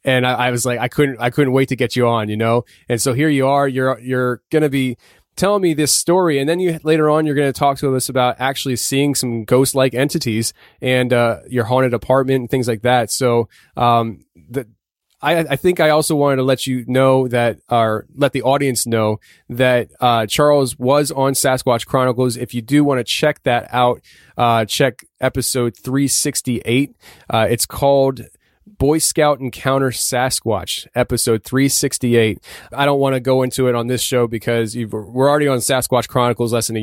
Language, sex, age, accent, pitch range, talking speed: English, male, 20-39, American, 115-135 Hz, 200 wpm